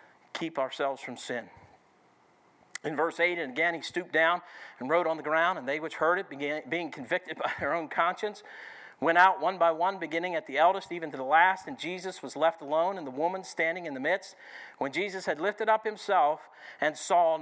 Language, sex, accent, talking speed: English, male, American, 210 wpm